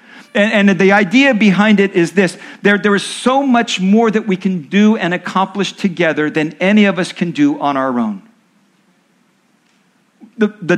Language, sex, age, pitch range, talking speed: English, male, 50-69, 180-225 Hz, 160 wpm